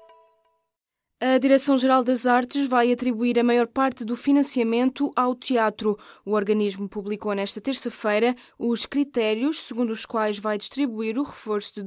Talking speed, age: 140 wpm, 20-39